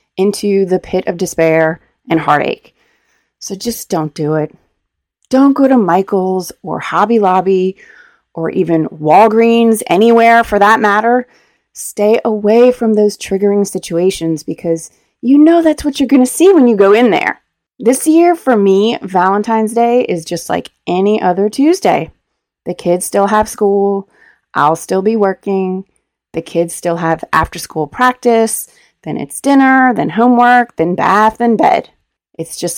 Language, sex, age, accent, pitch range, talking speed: English, female, 30-49, American, 185-245 Hz, 155 wpm